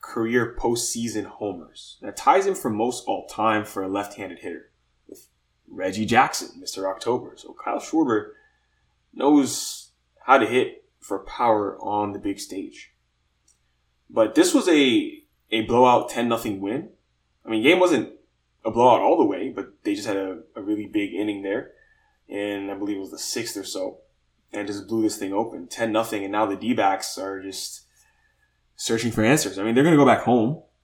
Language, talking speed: English, 185 wpm